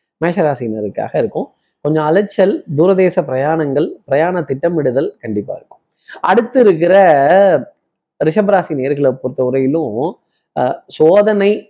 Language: Tamil